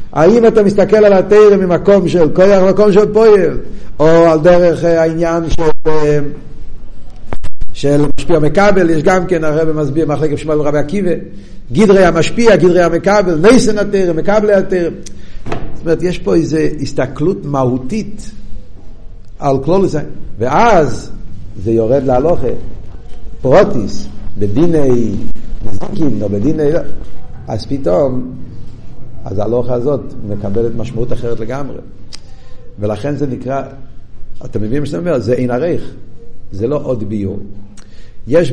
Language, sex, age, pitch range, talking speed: Hebrew, male, 50-69, 120-180 Hz, 120 wpm